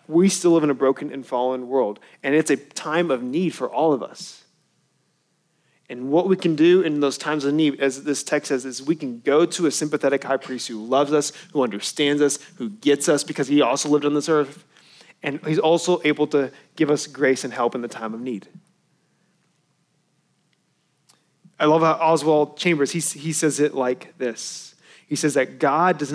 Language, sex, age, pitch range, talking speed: English, male, 30-49, 140-170 Hz, 205 wpm